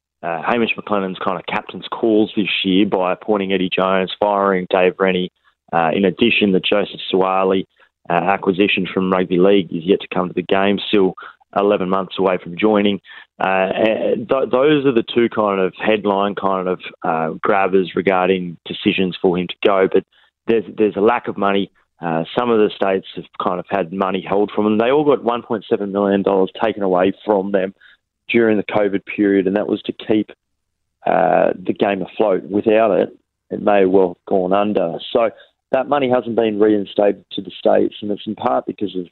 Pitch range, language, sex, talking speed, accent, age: 95-105 Hz, English, male, 190 wpm, Australian, 20-39